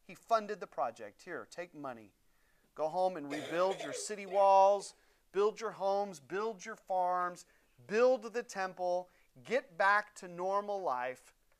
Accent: American